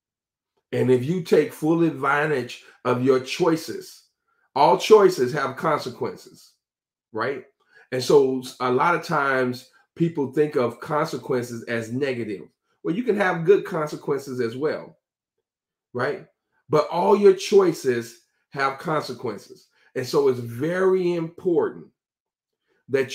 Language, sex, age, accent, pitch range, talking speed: English, male, 40-59, American, 135-195 Hz, 120 wpm